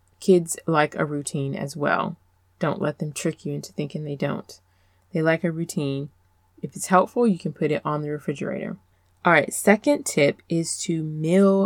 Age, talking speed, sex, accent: 20-39, 185 wpm, female, American